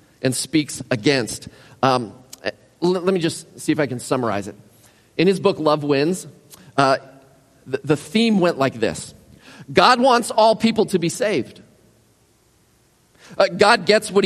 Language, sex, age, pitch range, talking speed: English, male, 40-59, 135-175 Hz, 150 wpm